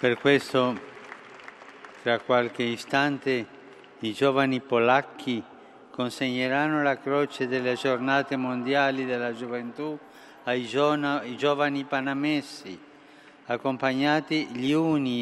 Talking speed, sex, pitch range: 85 wpm, male, 120-140 Hz